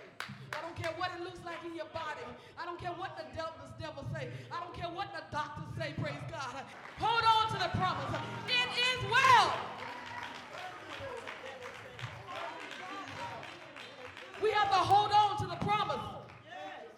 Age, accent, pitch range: 40-59, American, 345-425 Hz